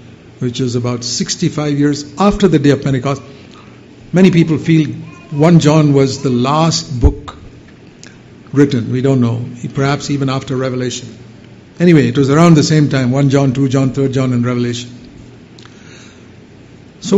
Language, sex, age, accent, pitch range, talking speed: English, male, 60-79, Indian, 130-175 Hz, 150 wpm